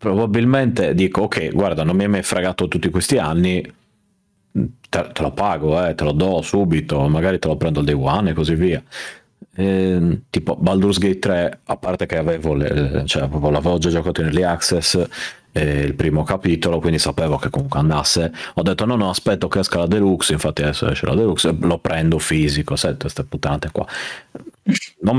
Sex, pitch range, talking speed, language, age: male, 75-95 Hz, 185 wpm, Italian, 30-49